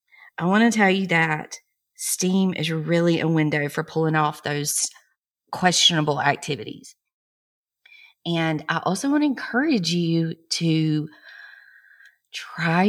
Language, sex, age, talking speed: English, female, 30-49, 120 wpm